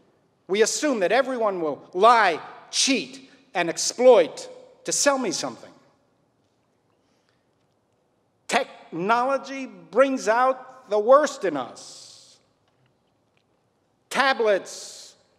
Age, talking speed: 50-69, 80 wpm